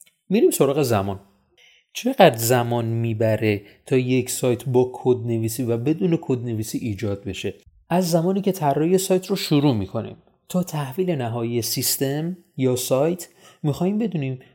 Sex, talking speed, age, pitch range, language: male, 140 wpm, 30-49, 115-165 Hz, Persian